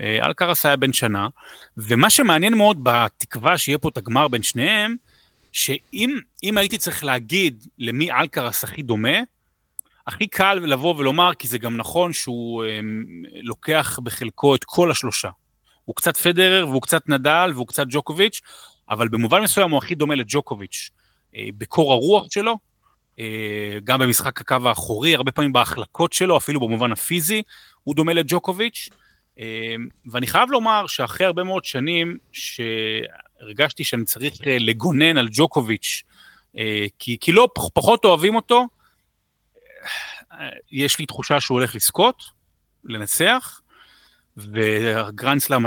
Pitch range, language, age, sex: 115-170 Hz, Hebrew, 30-49, male